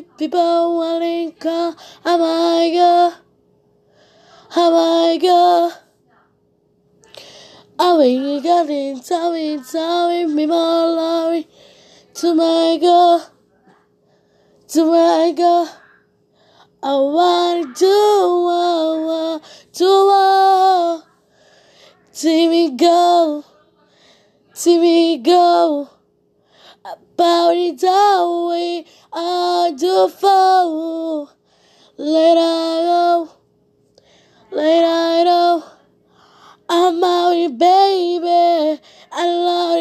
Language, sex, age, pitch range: Korean, female, 20-39, 330-350 Hz